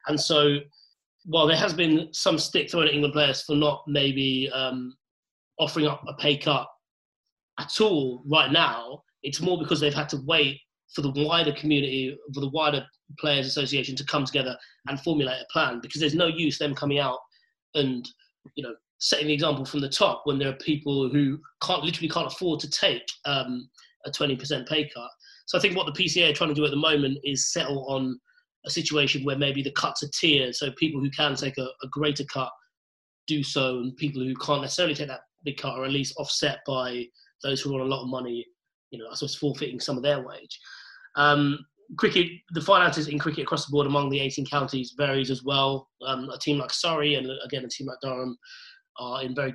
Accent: British